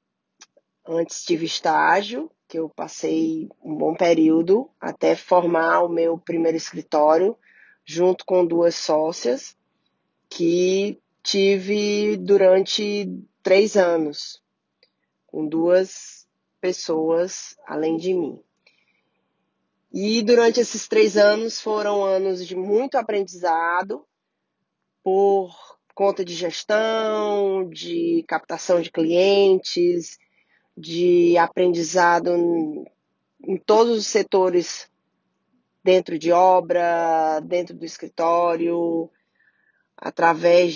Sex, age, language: female, 20-39, Portuguese